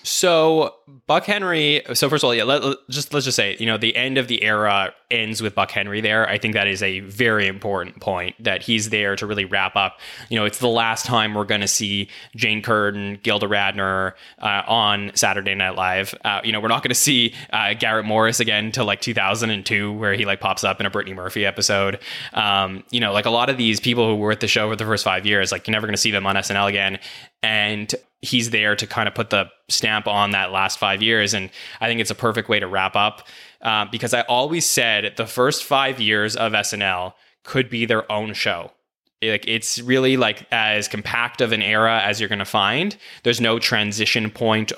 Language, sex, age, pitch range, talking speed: English, male, 20-39, 100-115 Hz, 230 wpm